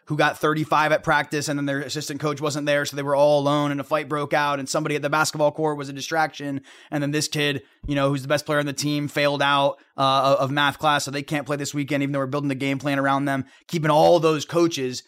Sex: male